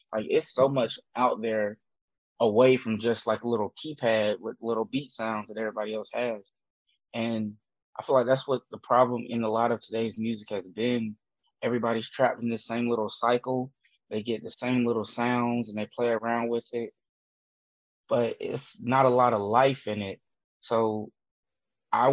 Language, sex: English, male